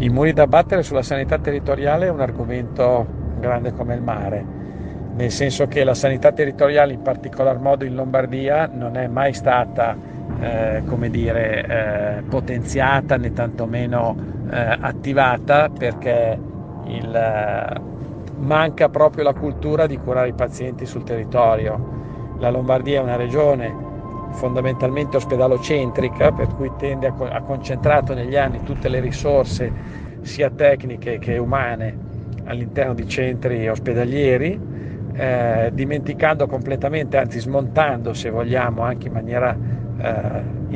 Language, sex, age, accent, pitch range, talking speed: Italian, male, 50-69, native, 120-140 Hz, 120 wpm